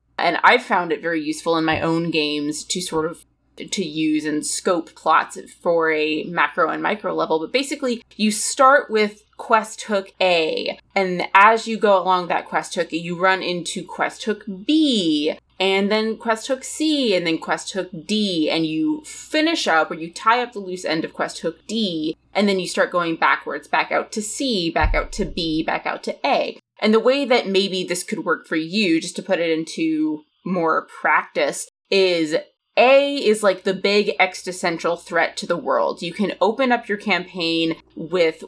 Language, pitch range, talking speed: English, 165-220 Hz, 195 wpm